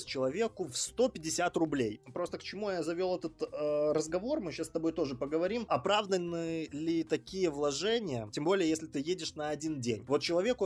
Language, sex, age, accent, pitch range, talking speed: Russian, male, 20-39, native, 140-185 Hz, 180 wpm